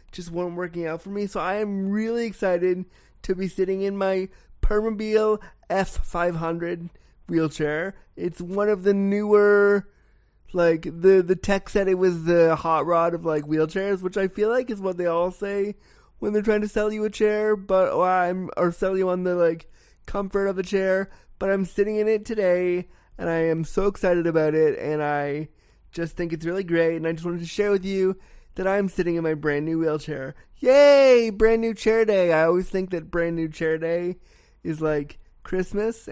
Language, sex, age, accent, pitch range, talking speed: English, male, 20-39, American, 165-200 Hz, 195 wpm